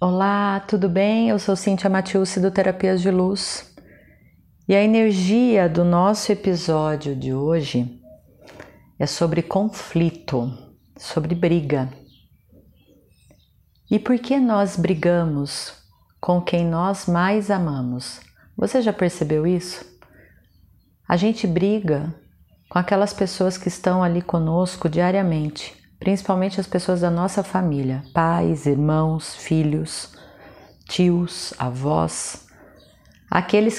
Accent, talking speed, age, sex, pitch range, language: Brazilian, 110 wpm, 40-59, female, 140-190 Hz, Portuguese